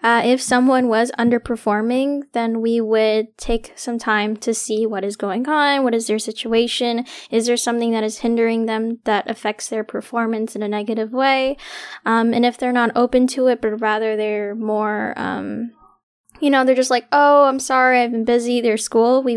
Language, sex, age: English, female, 10-29